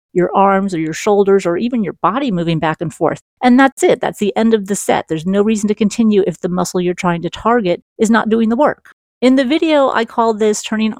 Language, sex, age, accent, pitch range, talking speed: English, female, 40-59, American, 185-235 Hz, 250 wpm